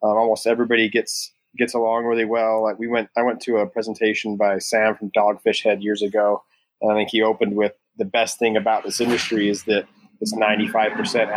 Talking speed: 205 wpm